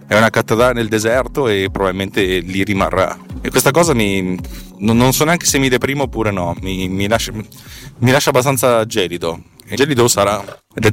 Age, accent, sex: 30-49, native, male